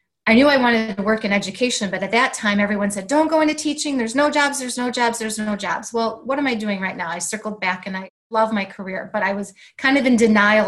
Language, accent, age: English, American, 30-49